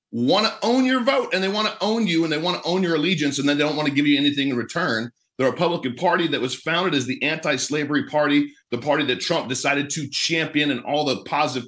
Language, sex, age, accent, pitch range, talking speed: English, male, 40-59, American, 130-155 Hz, 255 wpm